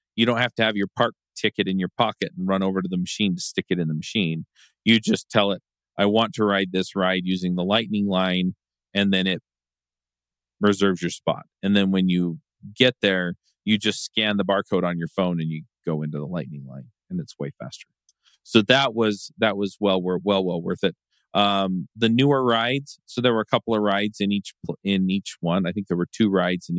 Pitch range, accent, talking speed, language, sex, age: 85-110 Hz, American, 230 wpm, English, male, 40-59